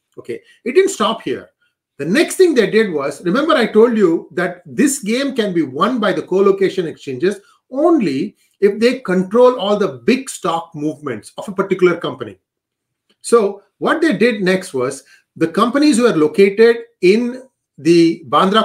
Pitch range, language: 170-235 Hz, English